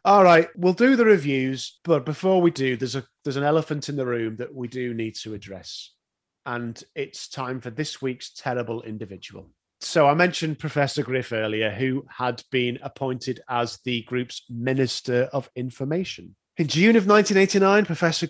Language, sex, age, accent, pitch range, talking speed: English, male, 30-49, British, 125-175 Hz, 175 wpm